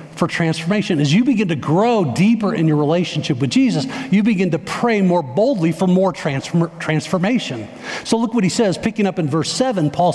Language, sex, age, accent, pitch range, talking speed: English, male, 50-69, American, 155-200 Hz, 195 wpm